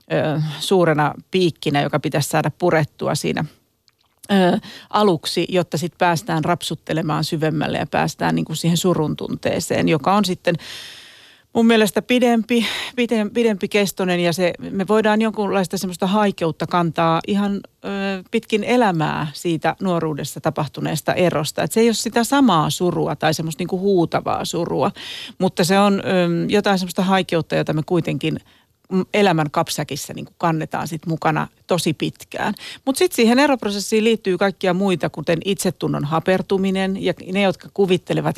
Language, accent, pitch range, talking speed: Finnish, native, 160-200 Hz, 130 wpm